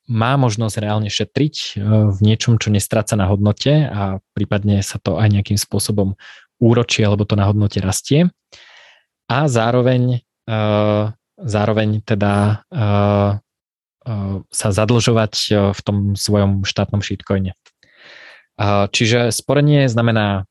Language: Slovak